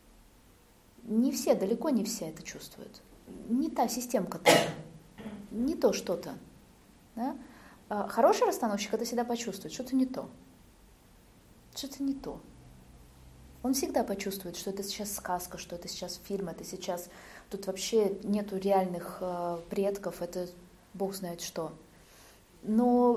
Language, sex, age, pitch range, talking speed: Russian, female, 20-39, 185-240 Hz, 125 wpm